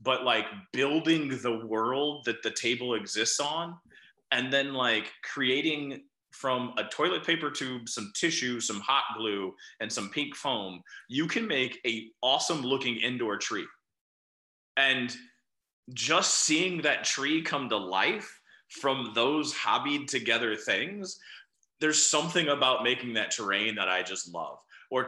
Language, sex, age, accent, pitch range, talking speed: English, male, 30-49, American, 110-150 Hz, 145 wpm